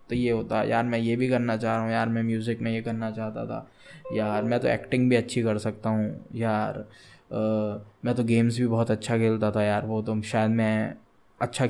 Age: 20-39